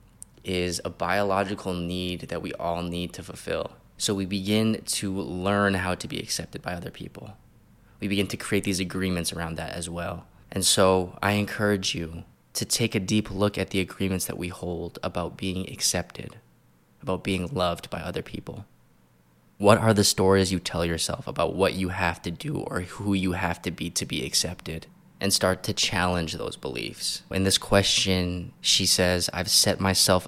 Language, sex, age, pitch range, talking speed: English, male, 20-39, 85-100 Hz, 185 wpm